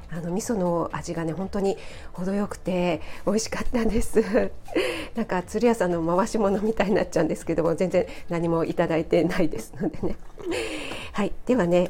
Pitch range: 170-230 Hz